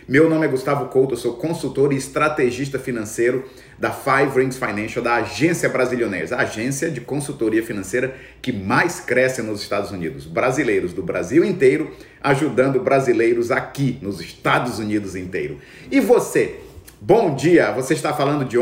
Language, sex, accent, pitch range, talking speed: English, male, Brazilian, 120-160 Hz, 155 wpm